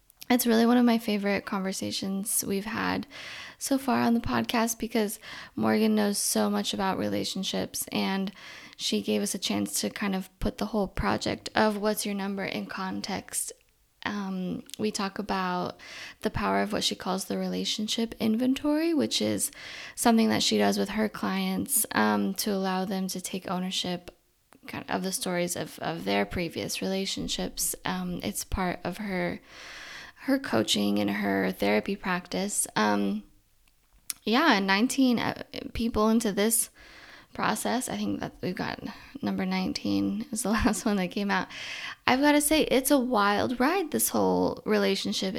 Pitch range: 180-245 Hz